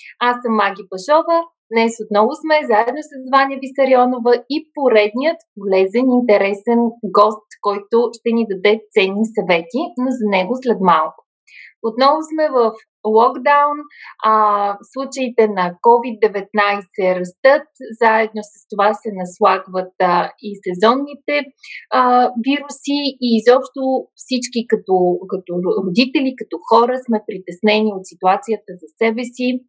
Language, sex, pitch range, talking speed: Bulgarian, female, 200-260 Hz, 125 wpm